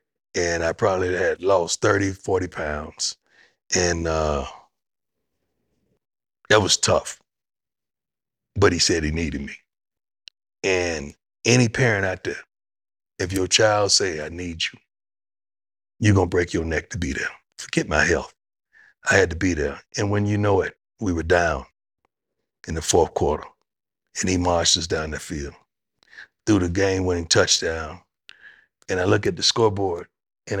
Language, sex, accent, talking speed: English, male, American, 155 wpm